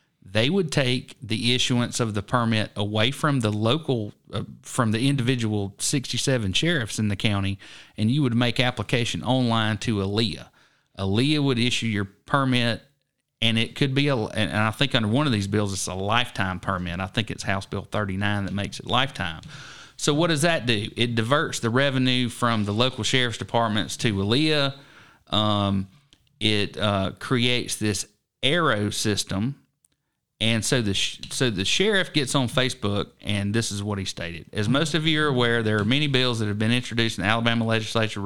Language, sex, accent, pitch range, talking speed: English, male, American, 105-130 Hz, 185 wpm